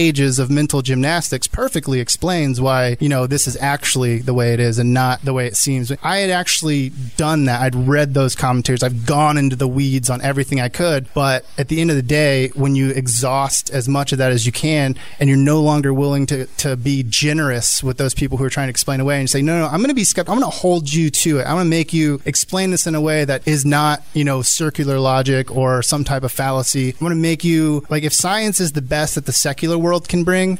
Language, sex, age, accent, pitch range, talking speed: English, male, 20-39, American, 130-155 Hz, 250 wpm